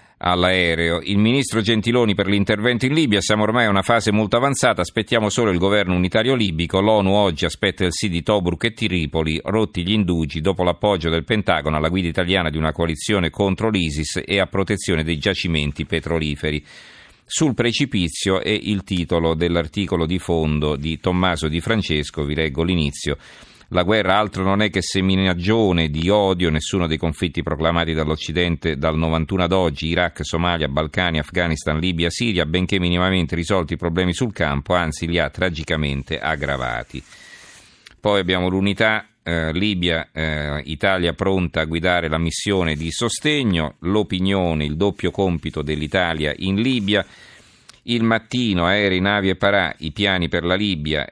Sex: male